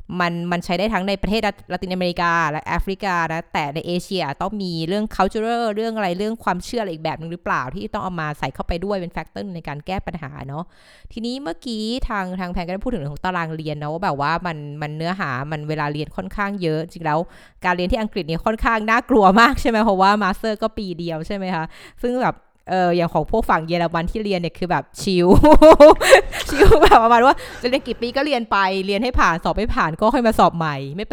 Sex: female